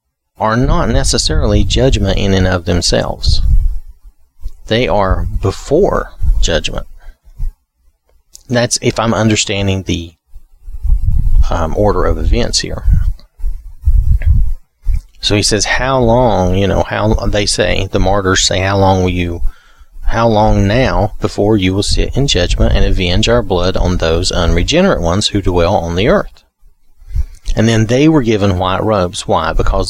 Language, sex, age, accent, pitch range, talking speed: English, male, 40-59, American, 80-105 Hz, 140 wpm